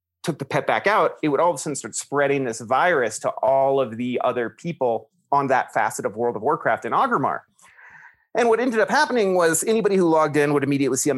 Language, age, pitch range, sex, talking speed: English, 30-49, 125-170 Hz, male, 235 wpm